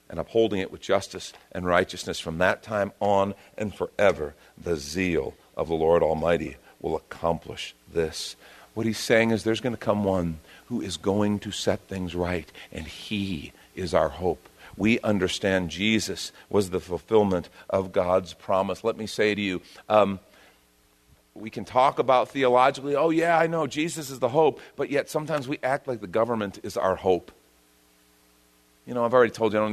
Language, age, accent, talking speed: English, 50-69, American, 180 wpm